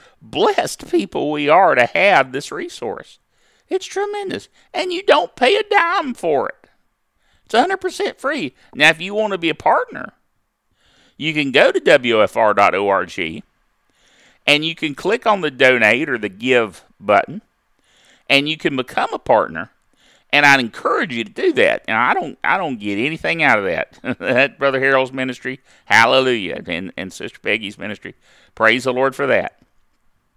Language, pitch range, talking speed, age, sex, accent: English, 140-225 Hz, 165 wpm, 50-69, male, American